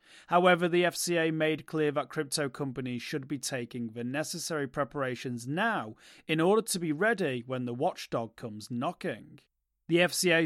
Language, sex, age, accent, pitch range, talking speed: English, male, 30-49, British, 135-175 Hz, 155 wpm